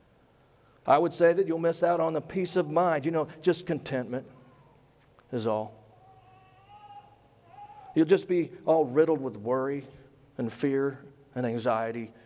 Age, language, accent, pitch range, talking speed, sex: 40-59, English, American, 120-155 Hz, 140 wpm, male